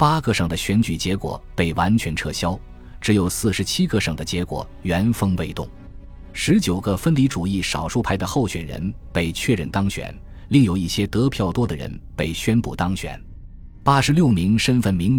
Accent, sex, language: native, male, Chinese